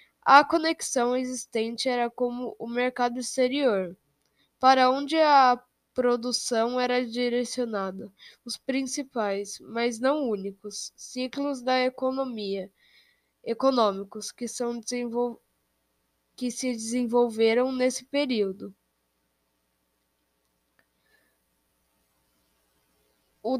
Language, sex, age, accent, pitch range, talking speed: Portuguese, female, 10-29, Brazilian, 225-275 Hz, 80 wpm